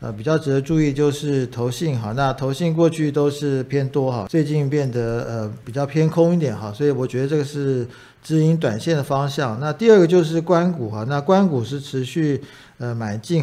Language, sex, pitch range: Chinese, male, 130-165 Hz